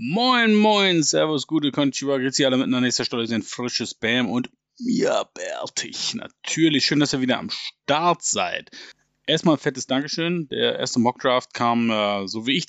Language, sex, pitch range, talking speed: German, male, 110-150 Hz, 175 wpm